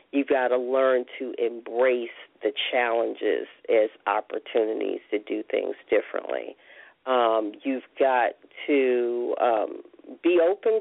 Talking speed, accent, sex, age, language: 115 wpm, American, female, 40-59, English